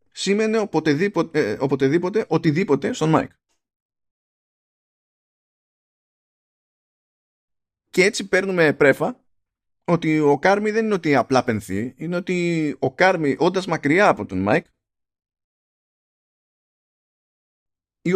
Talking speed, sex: 95 wpm, male